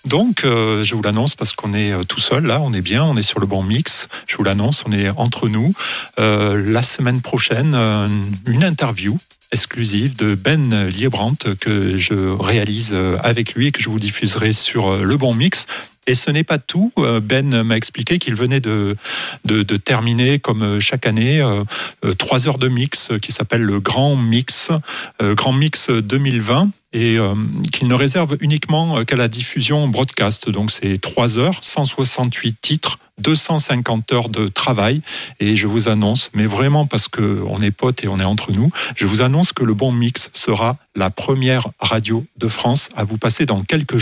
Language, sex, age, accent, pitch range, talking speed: French, male, 40-59, French, 105-135 Hz, 185 wpm